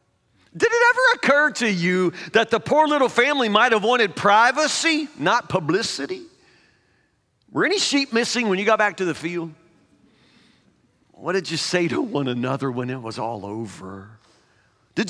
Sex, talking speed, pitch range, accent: male, 165 wpm, 125-210 Hz, American